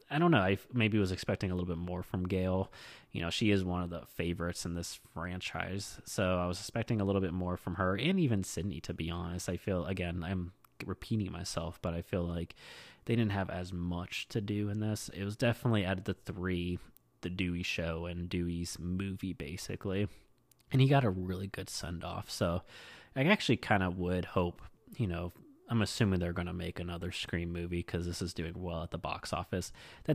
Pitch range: 85-100 Hz